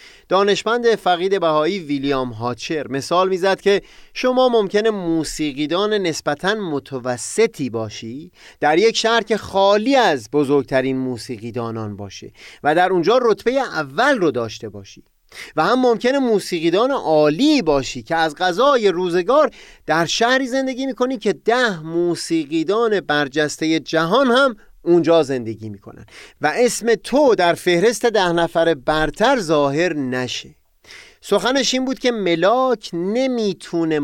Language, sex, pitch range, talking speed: Persian, male, 135-215 Hz, 125 wpm